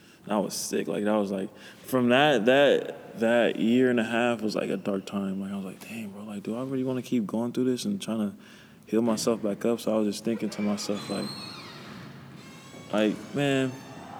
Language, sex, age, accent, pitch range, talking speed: English, male, 20-39, American, 100-125 Hz, 225 wpm